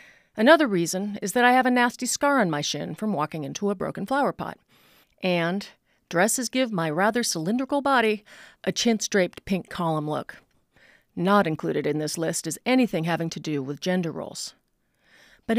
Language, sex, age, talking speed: English, female, 40-59, 175 wpm